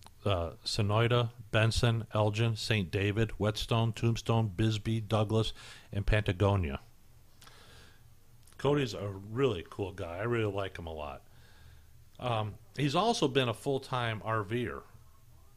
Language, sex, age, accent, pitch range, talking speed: English, male, 50-69, American, 100-115 Hz, 115 wpm